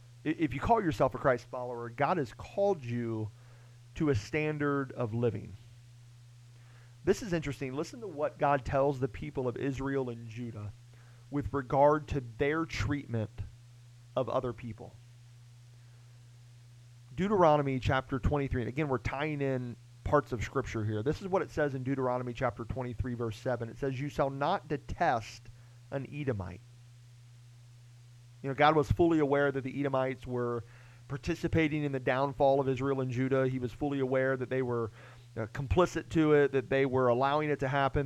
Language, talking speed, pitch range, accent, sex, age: English, 165 wpm, 120-145 Hz, American, male, 40-59